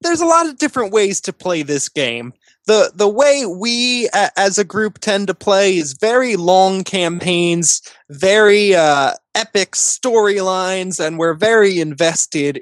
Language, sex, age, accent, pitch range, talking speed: English, male, 20-39, American, 160-200 Hz, 155 wpm